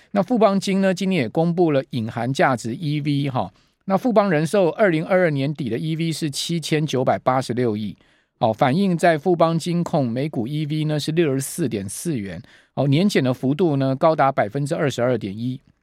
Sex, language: male, Chinese